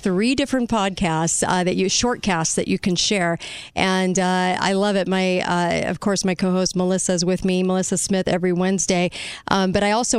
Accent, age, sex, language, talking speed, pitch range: American, 40-59, female, English, 200 wpm, 180-210 Hz